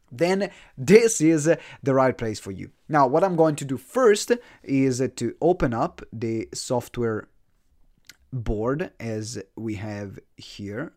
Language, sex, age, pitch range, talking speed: English, male, 30-49, 120-155 Hz, 140 wpm